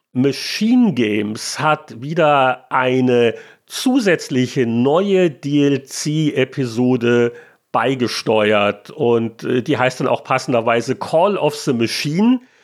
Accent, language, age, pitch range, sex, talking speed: German, German, 40-59, 130-170 Hz, male, 95 wpm